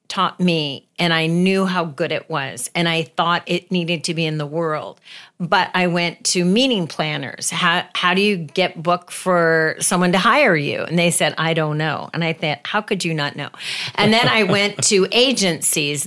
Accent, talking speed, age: American, 210 wpm, 40-59